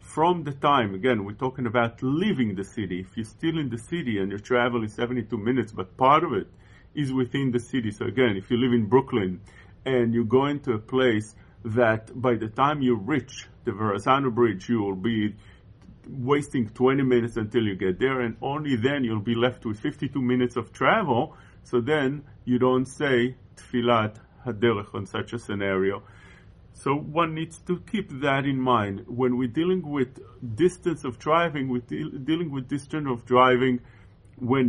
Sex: male